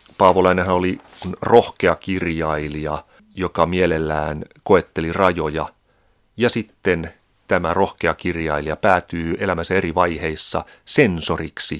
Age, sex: 30-49, male